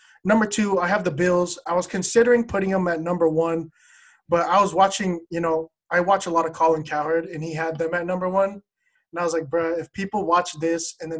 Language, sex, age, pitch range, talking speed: English, male, 20-39, 160-185 Hz, 240 wpm